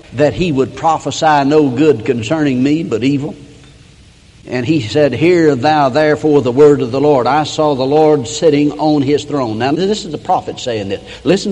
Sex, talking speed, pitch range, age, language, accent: male, 195 wpm, 140-175 Hz, 60-79, English, American